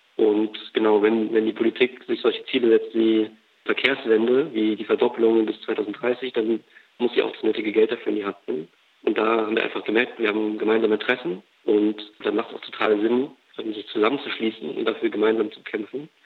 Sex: male